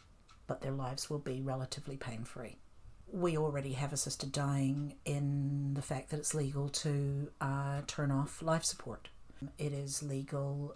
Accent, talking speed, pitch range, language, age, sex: Australian, 150 wpm, 135-165 Hz, English, 50-69, female